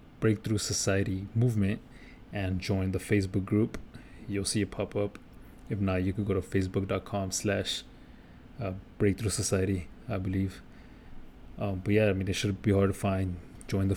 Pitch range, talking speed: 95-105 Hz, 165 wpm